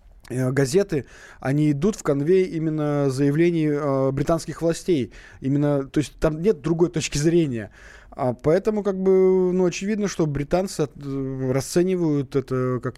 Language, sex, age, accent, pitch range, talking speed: Russian, male, 20-39, native, 130-160 Hz, 130 wpm